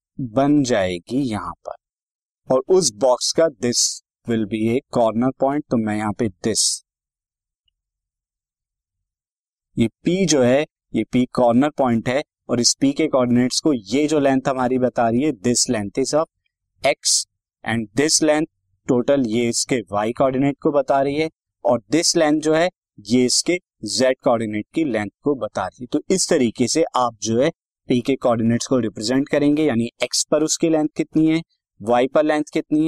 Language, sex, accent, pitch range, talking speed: Hindi, male, native, 115-155 Hz, 170 wpm